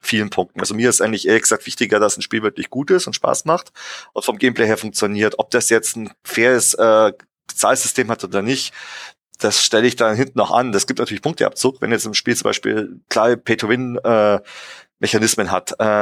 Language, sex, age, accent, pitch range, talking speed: German, male, 30-49, German, 105-120 Hz, 205 wpm